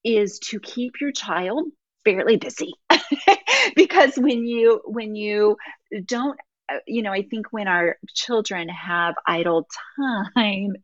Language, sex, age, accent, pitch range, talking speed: English, female, 30-49, American, 175-245 Hz, 125 wpm